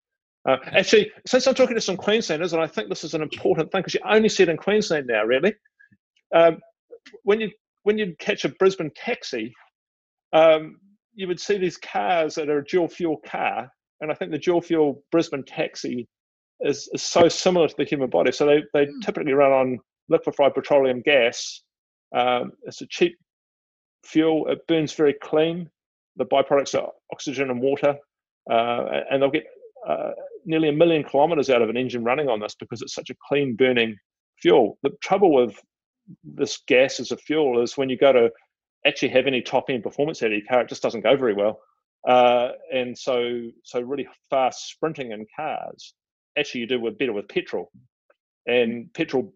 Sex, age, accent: male, 40-59, British